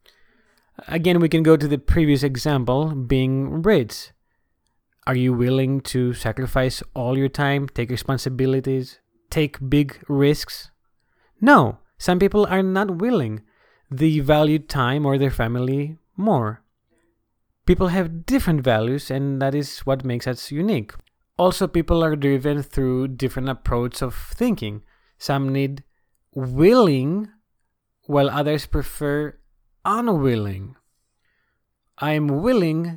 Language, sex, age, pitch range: English, male, 30-49, 130-165 Hz